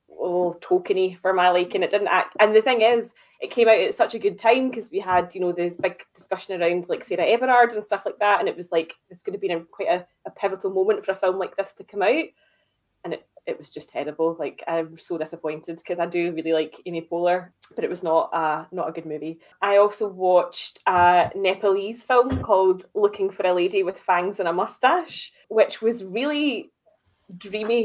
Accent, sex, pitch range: British, female, 175-210 Hz